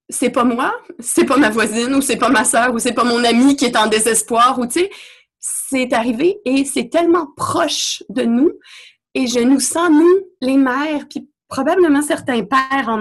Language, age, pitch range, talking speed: French, 30-49, 235-295 Hz, 205 wpm